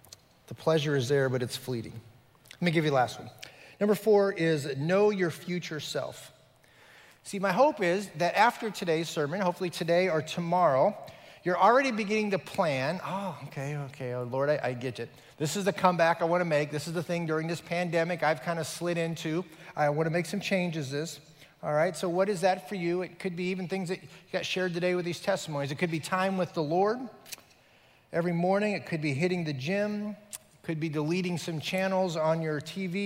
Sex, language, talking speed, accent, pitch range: male, English, 210 wpm, American, 155-185 Hz